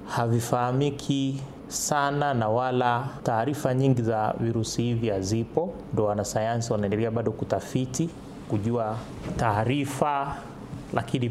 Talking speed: 95 wpm